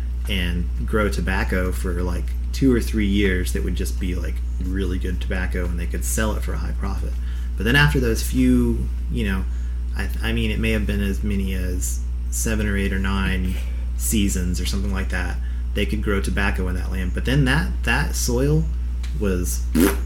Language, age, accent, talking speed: English, 30-49, American, 195 wpm